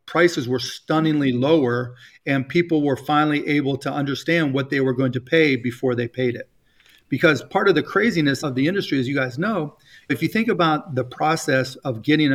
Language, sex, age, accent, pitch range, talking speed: English, male, 40-59, American, 135-160 Hz, 200 wpm